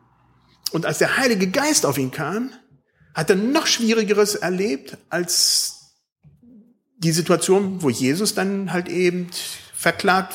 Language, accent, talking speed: German, German, 130 wpm